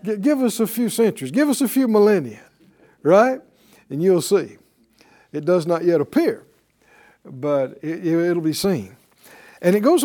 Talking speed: 155 wpm